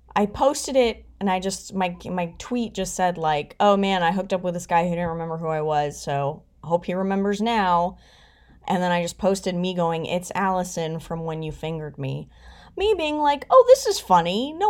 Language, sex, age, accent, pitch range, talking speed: English, female, 20-39, American, 165-255 Hz, 215 wpm